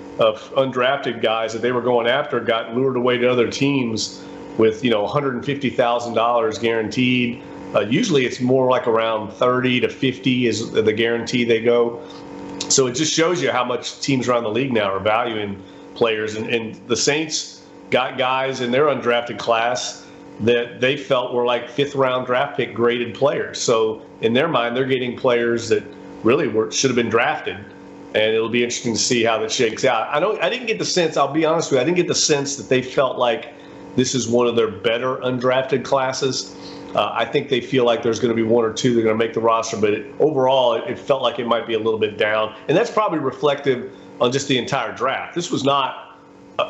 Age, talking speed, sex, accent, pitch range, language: 40-59, 215 wpm, male, American, 110-130 Hz, English